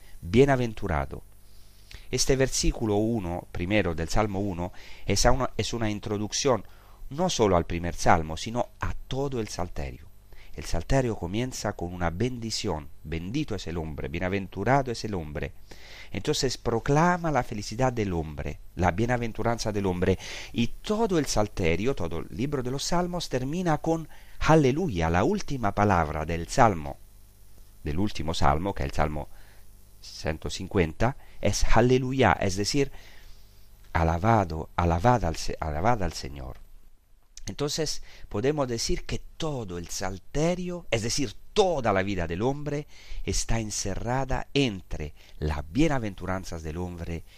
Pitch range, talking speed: 85-115 Hz, 130 wpm